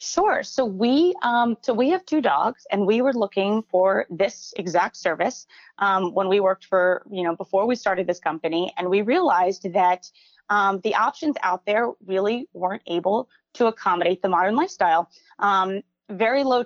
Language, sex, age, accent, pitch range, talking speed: English, female, 20-39, American, 185-250 Hz, 175 wpm